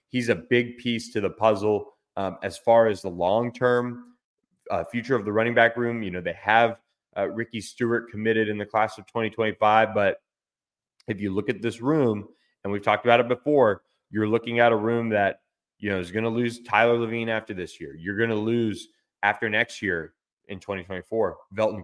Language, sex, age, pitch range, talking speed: English, male, 20-39, 100-115 Hz, 200 wpm